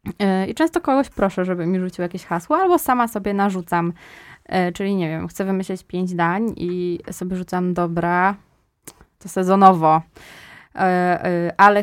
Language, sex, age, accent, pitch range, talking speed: Polish, female, 20-39, native, 175-195 Hz, 135 wpm